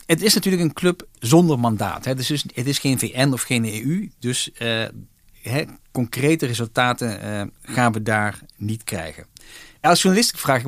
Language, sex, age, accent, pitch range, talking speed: Dutch, male, 50-69, Dutch, 115-140 Hz, 165 wpm